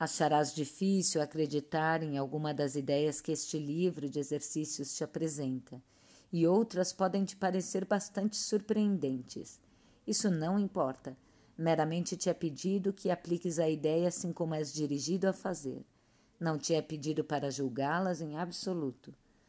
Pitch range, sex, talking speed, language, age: 145-180 Hz, female, 140 wpm, Portuguese, 50-69